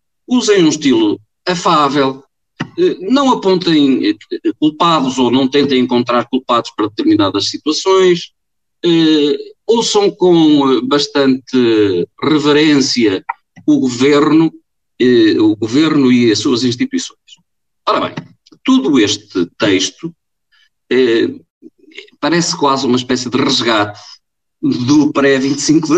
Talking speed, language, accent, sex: 95 wpm, Portuguese, Portuguese, male